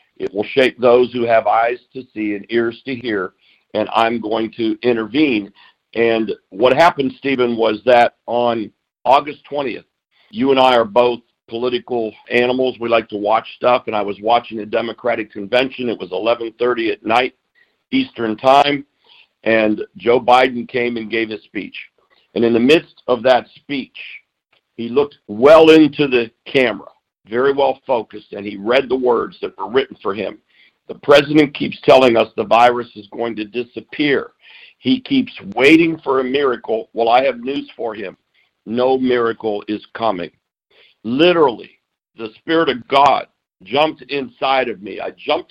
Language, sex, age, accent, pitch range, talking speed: English, male, 50-69, American, 115-135 Hz, 165 wpm